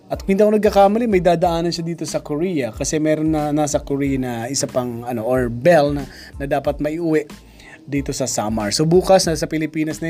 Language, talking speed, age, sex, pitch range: Filipino, 195 wpm, 20-39, male, 135-170 Hz